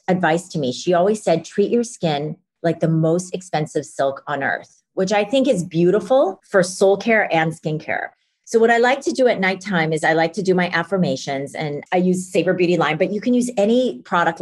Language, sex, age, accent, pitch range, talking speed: English, female, 40-59, American, 165-220 Hz, 220 wpm